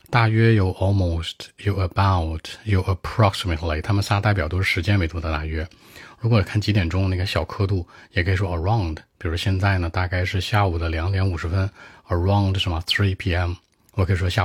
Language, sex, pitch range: Chinese, male, 85-105 Hz